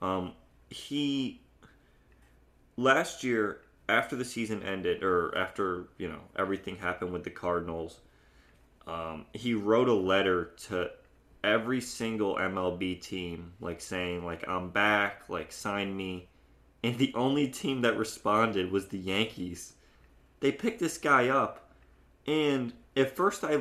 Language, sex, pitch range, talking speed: English, male, 90-130 Hz, 135 wpm